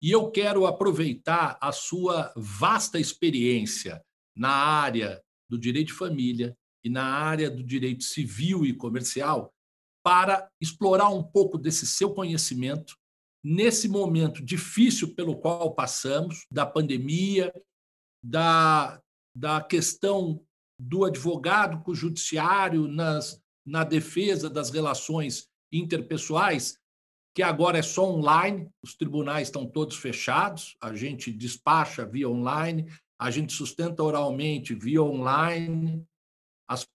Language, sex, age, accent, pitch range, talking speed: Portuguese, male, 60-79, Brazilian, 150-185 Hz, 115 wpm